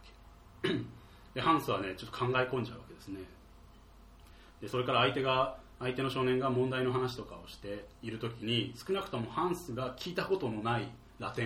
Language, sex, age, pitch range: Japanese, male, 30-49, 90-130 Hz